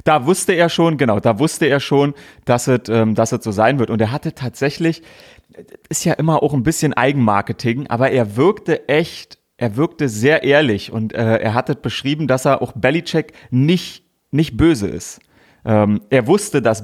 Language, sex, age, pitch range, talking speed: German, male, 30-49, 110-140 Hz, 180 wpm